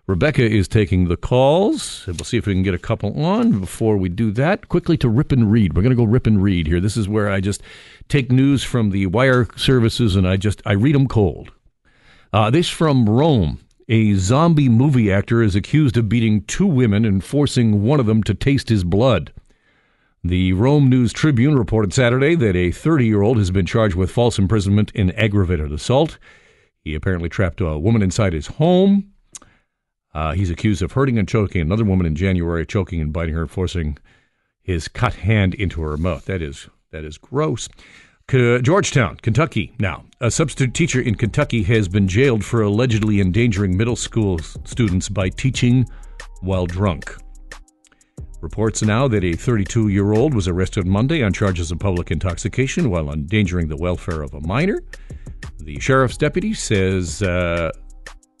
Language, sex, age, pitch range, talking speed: English, male, 50-69, 95-125 Hz, 175 wpm